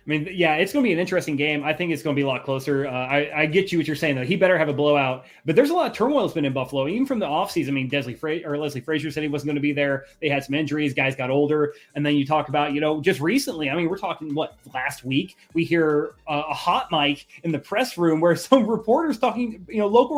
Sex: male